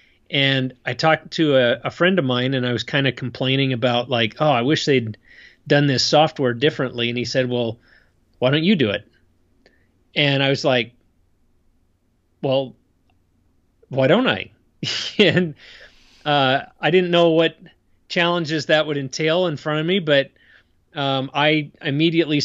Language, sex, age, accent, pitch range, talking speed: English, male, 30-49, American, 130-160 Hz, 160 wpm